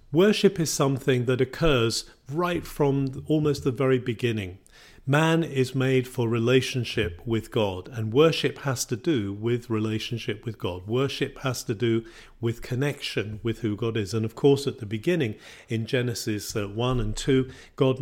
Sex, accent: male, British